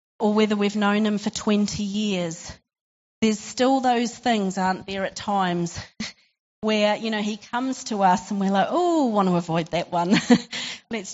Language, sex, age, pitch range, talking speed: English, female, 40-59, 185-220 Hz, 180 wpm